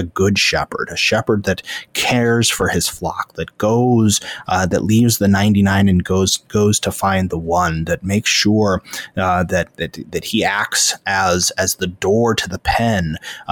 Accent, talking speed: American, 180 wpm